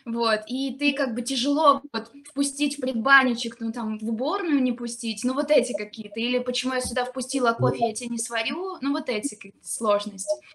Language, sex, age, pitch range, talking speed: Russian, female, 20-39, 235-280 Hz, 200 wpm